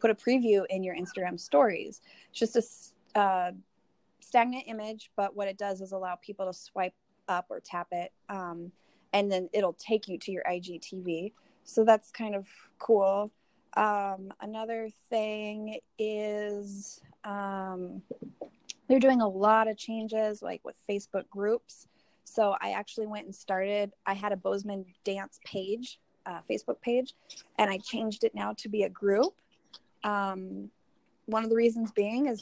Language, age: English, 20-39